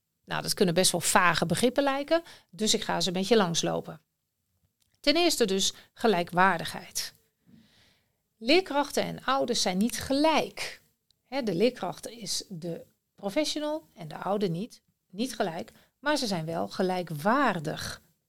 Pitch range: 180-280 Hz